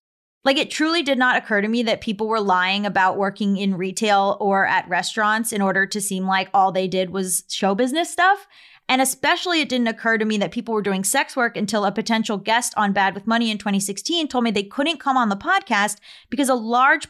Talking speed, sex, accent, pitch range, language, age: 230 wpm, female, American, 195-270 Hz, English, 20-39